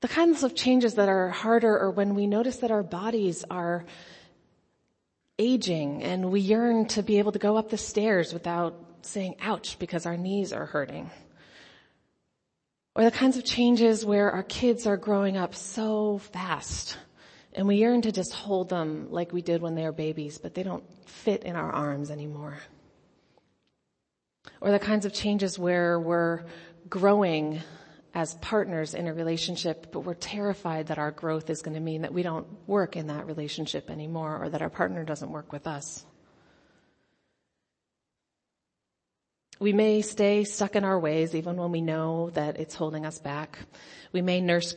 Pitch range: 155-205 Hz